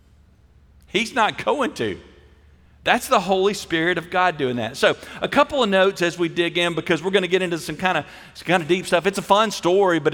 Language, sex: English, male